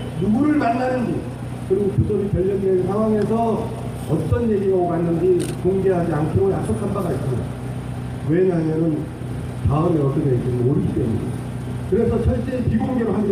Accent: native